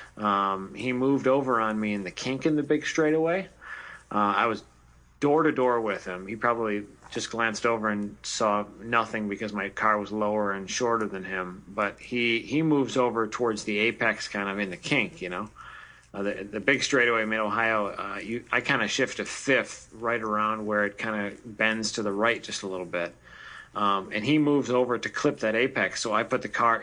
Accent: American